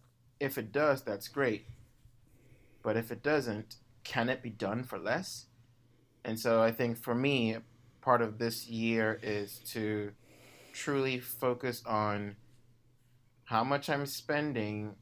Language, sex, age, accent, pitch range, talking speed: English, male, 30-49, American, 105-120 Hz, 135 wpm